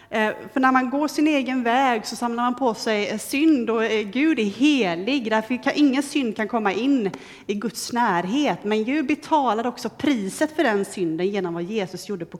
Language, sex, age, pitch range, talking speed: Swedish, female, 30-49, 190-270 Hz, 195 wpm